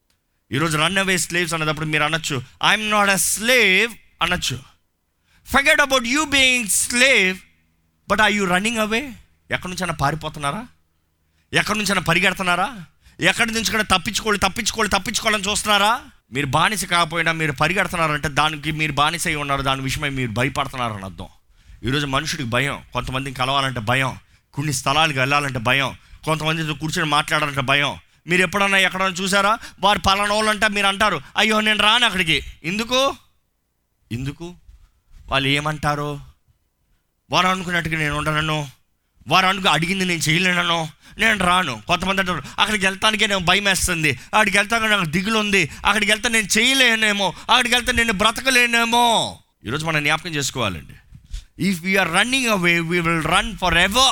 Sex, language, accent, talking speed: male, Telugu, native, 135 wpm